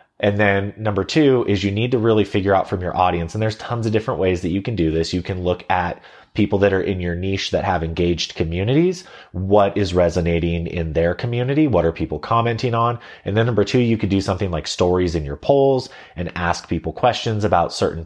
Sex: male